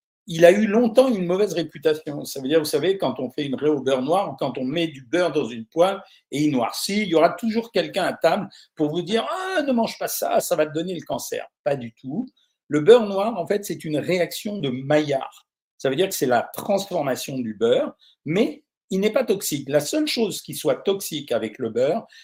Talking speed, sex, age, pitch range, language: 240 wpm, male, 50-69, 150-220 Hz, French